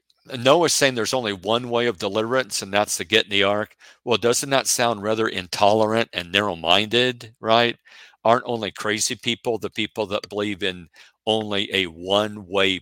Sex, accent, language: male, American, English